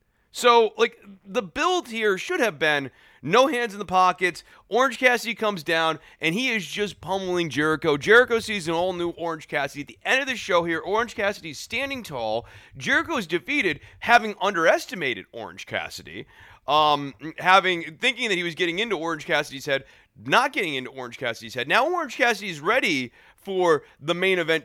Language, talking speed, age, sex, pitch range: English, 175 wpm, 30-49, male, 160-265 Hz